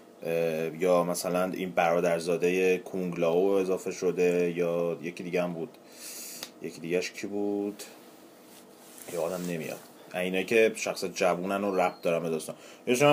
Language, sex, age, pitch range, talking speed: Persian, male, 30-49, 90-110 Hz, 135 wpm